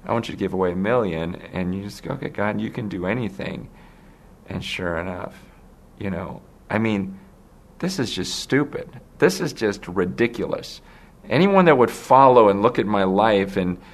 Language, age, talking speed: English, 40-59, 185 wpm